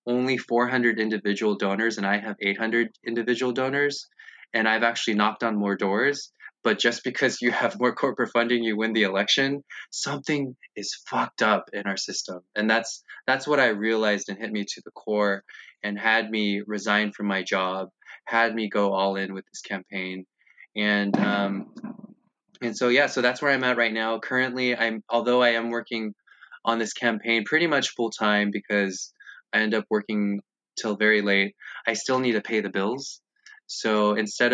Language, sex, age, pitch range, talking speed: English, male, 20-39, 100-115 Hz, 180 wpm